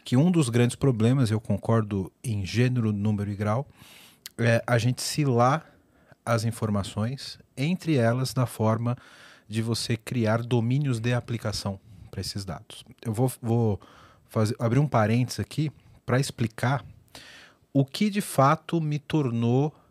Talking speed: 140 wpm